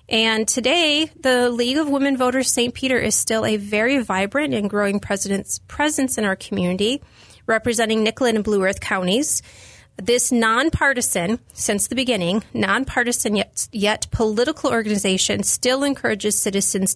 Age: 30-49